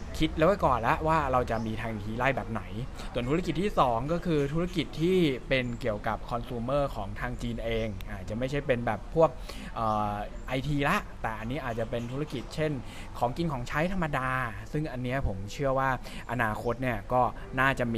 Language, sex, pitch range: Thai, male, 110-140 Hz